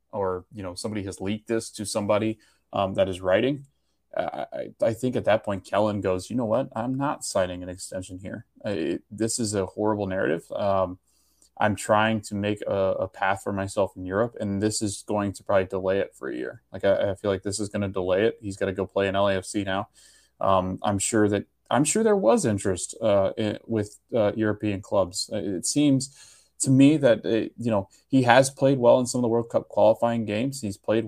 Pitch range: 95-110 Hz